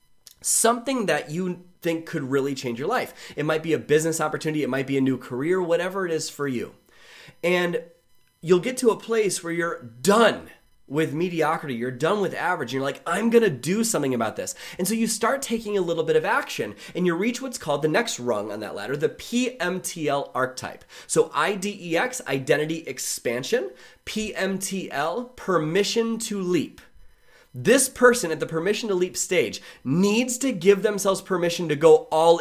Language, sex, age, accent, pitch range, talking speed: English, male, 30-49, American, 160-215 Hz, 180 wpm